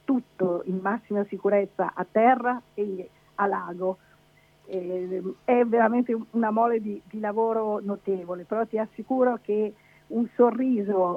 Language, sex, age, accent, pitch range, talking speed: Italian, female, 50-69, native, 190-220 Hz, 125 wpm